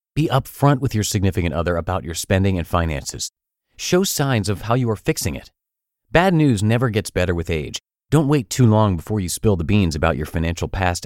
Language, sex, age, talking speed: English, male, 30-49, 210 wpm